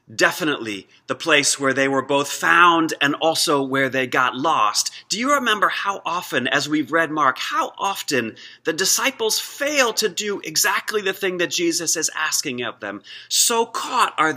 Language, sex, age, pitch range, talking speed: English, male, 30-49, 120-160 Hz, 175 wpm